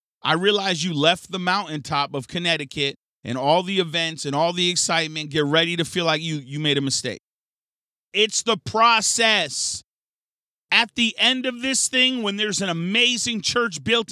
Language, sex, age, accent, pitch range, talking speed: English, male, 40-59, American, 195-245 Hz, 175 wpm